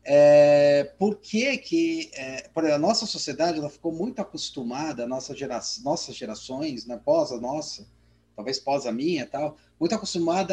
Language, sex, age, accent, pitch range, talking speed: Portuguese, male, 30-49, Brazilian, 145-195 Hz, 115 wpm